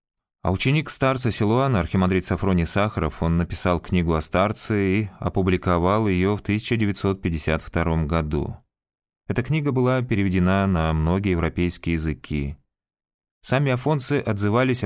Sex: male